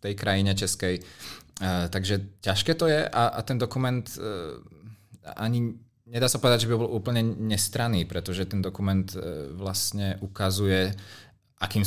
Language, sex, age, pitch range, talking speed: Czech, male, 20-39, 95-105 Hz, 125 wpm